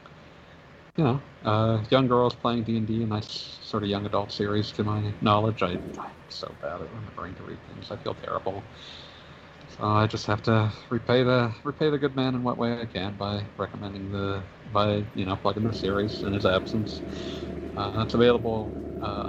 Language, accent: English, American